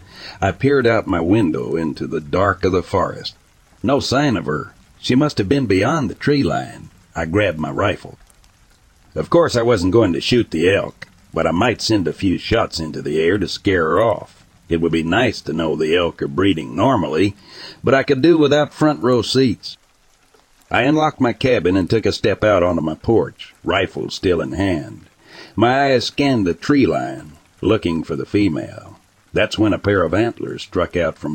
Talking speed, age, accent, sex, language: 200 wpm, 60-79, American, male, English